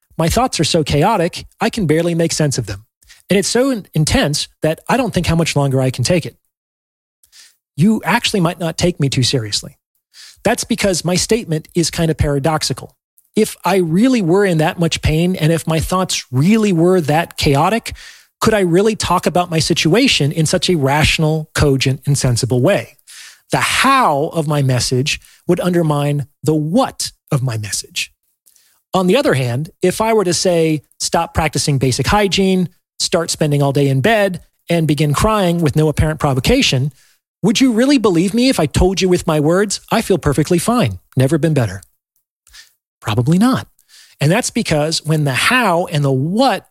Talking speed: 180 wpm